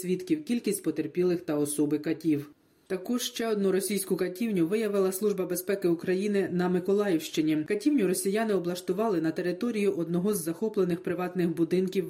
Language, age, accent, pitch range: Ukrainian, 20-39, native, 165-200 Hz